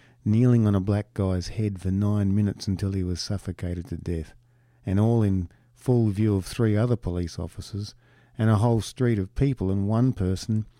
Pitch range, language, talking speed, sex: 95-120 Hz, English, 190 wpm, male